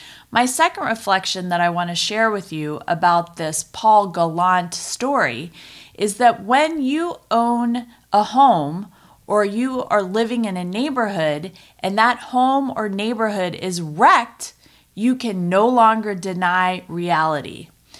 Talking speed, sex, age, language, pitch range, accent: 140 wpm, female, 30-49, English, 170-225 Hz, American